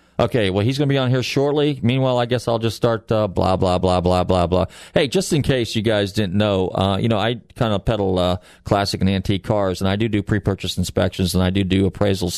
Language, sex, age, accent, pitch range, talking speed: English, male, 40-59, American, 90-115 Hz, 250 wpm